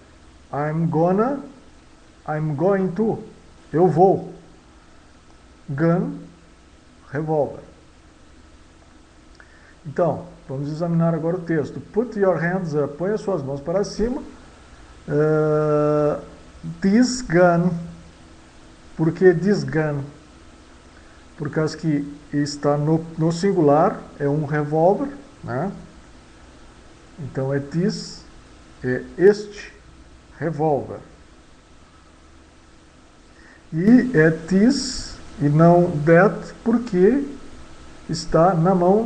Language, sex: English, male